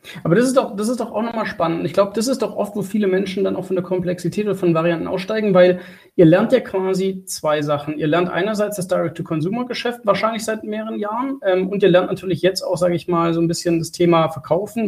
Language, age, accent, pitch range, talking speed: German, 30-49, German, 170-200 Hz, 240 wpm